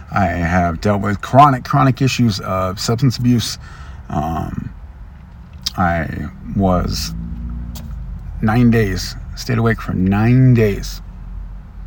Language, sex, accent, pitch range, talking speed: English, male, American, 85-115 Hz, 100 wpm